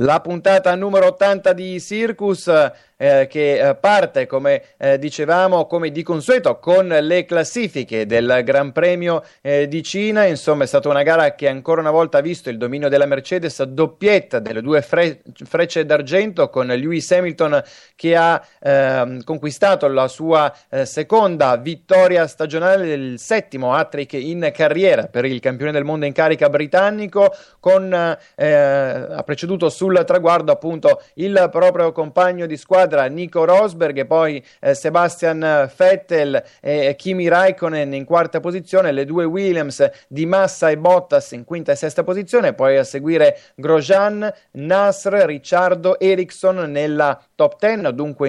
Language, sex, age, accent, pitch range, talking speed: Italian, male, 30-49, native, 145-190 Hz, 150 wpm